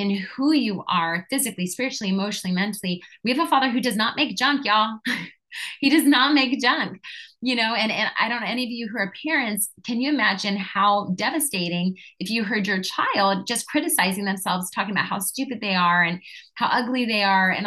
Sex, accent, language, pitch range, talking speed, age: female, American, English, 185-255 Hz, 205 wpm, 20-39